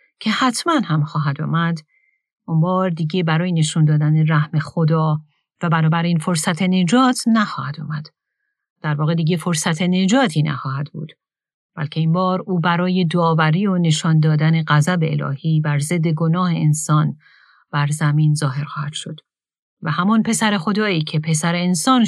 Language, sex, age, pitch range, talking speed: Persian, female, 40-59, 155-195 Hz, 145 wpm